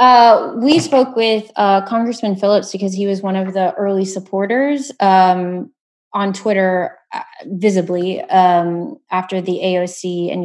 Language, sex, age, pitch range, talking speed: English, female, 20-39, 175-200 Hz, 145 wpm